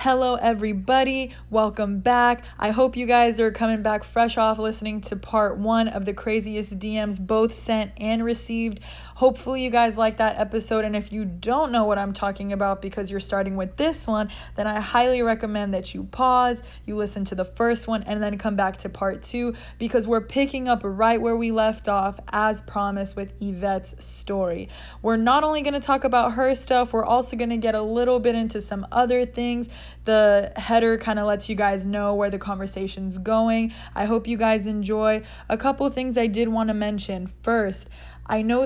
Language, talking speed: English, 200 wpm